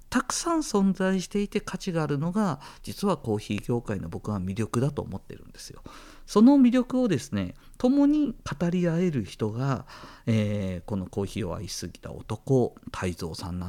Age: 50-69